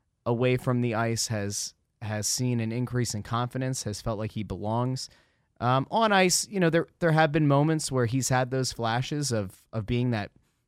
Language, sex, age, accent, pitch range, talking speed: English, male, 20-39, American, 110-135 Hz, 195 wpm